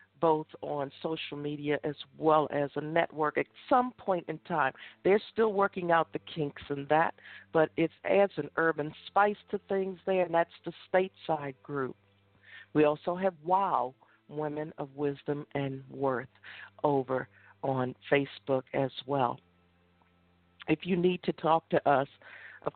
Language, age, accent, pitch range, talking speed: English, 50-69, American, 140-175 Hz, 155 wpm